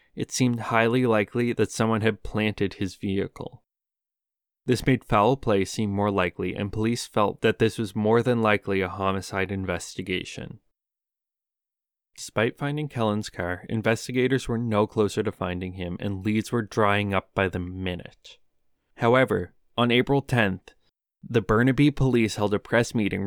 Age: 20-39